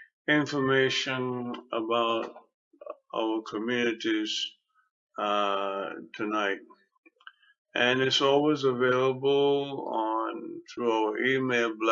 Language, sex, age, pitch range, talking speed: English, male, 50-69, 115-150 Hz, 70 wpm